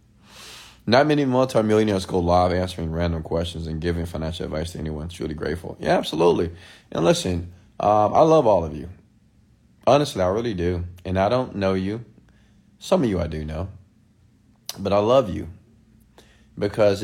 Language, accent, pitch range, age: English, American, 90-105 Hz, 30-49